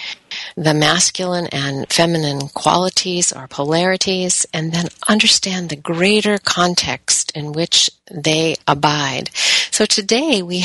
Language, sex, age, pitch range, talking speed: English, female, 50-69, 150-195 Hz, 115 wpm